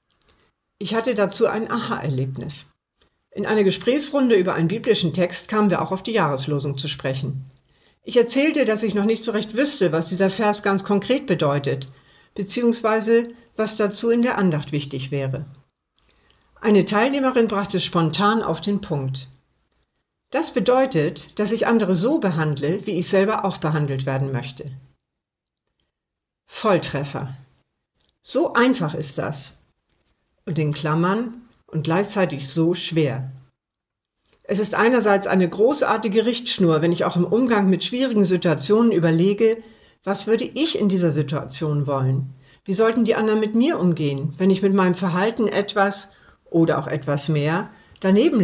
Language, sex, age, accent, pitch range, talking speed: German, female, 60-79, German, 150-220 Hz, 145 wpm